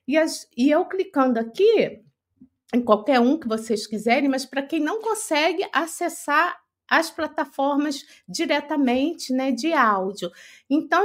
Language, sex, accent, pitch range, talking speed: Portuguese, female, Brazilian, 245-335 Hz, 130 wpm